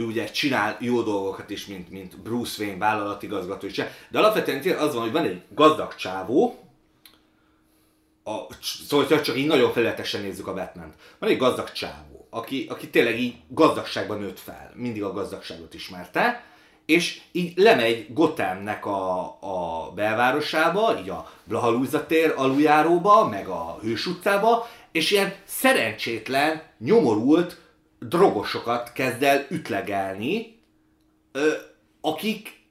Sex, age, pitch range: male, 30-49, 115-165 Hz